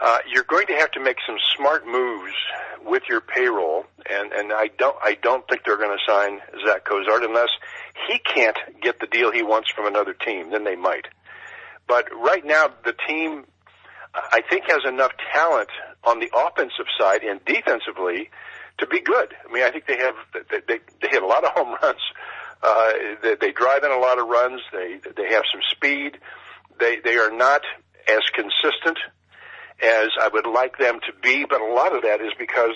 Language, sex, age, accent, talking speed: English, male, 50-69, American, 200 wpm